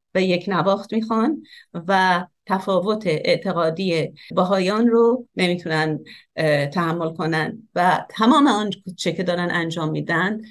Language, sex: Persian, female